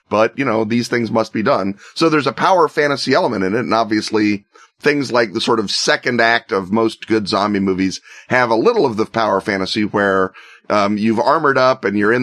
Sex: male